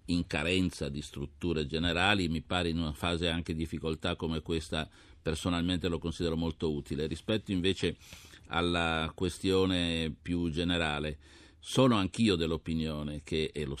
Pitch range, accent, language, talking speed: 75-90 Hz, native, Italian, 140 wpm